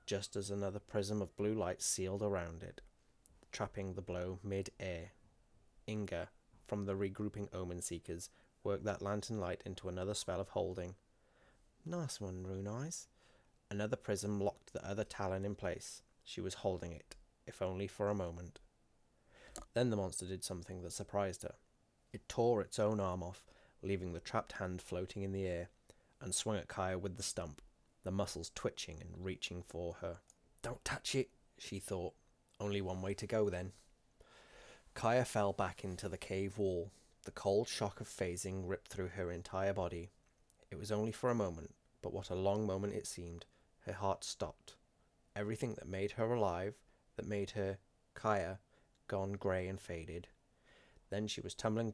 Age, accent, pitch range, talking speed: 20-39, British, 90-105 Hz, 170 wpm